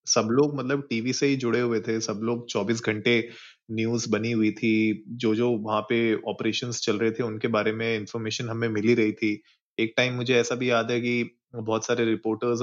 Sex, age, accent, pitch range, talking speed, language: male, 20-39, native, 105-120 Hz, 210 wpm, Hindi